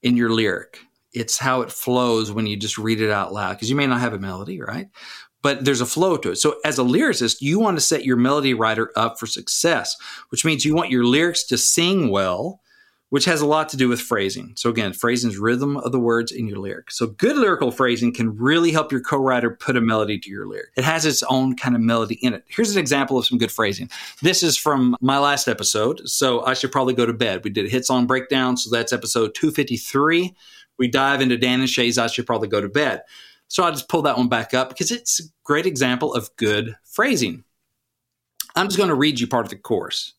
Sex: male